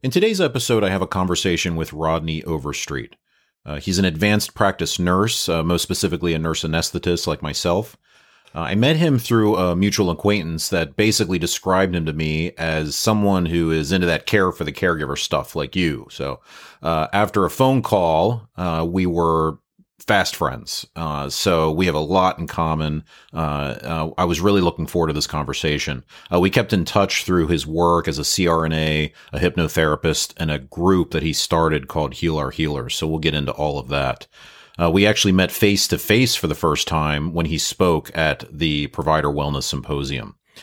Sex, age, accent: male, 30-49, American